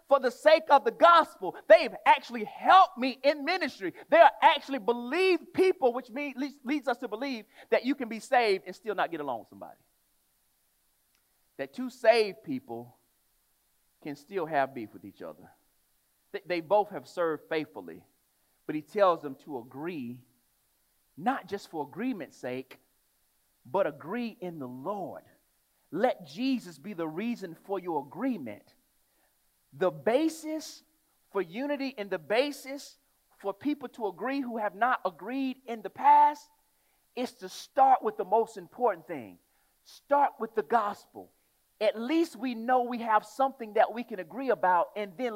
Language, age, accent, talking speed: English, 40-59, American, 155 wpm